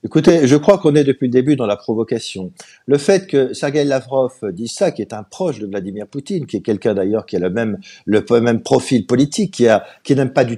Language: French